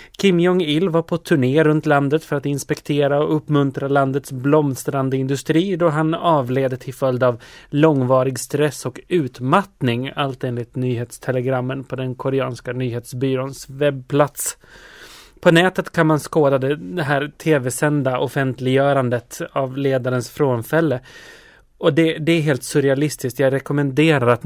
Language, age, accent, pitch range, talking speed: Swedish, 30-49, native, 125-155 Hz, 130 wpm